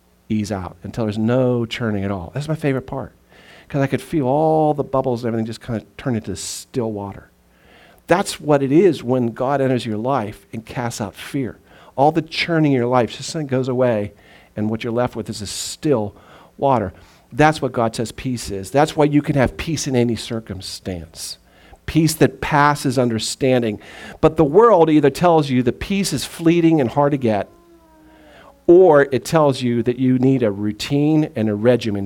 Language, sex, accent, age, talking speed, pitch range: English, male, American, 50-69, 195 wpm, 105-140 Hz